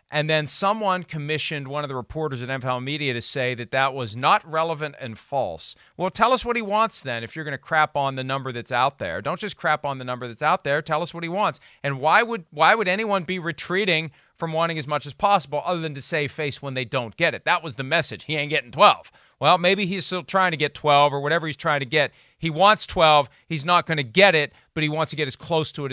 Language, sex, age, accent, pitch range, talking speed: English, male, 40-59, American, 130-165 Hz, 265 wpm